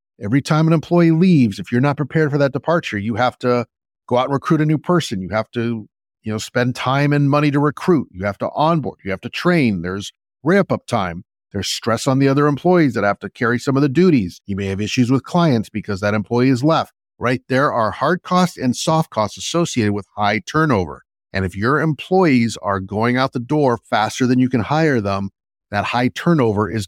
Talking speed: 225 wpm